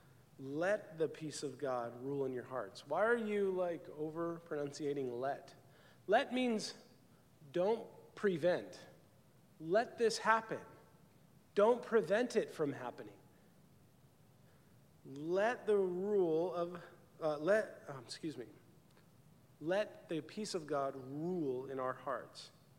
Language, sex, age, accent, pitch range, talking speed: English, male, 40-59, American, 140-185 Hz, 120 wpm